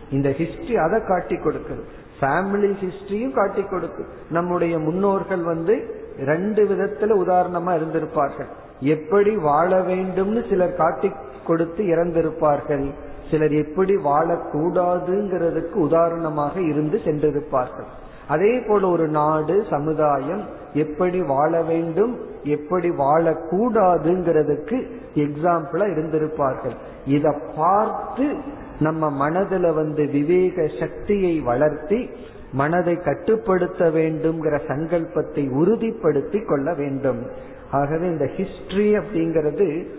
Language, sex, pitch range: Tamil, male, 150-190 Hz